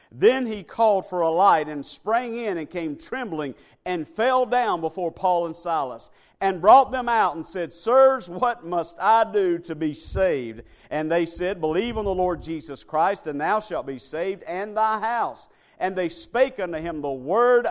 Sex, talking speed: male, 195 wpm